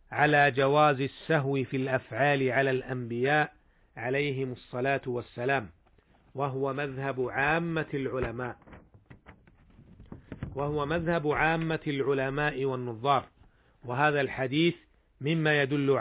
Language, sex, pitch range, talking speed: Arabic, male, 125-150 Hz, 85 wpm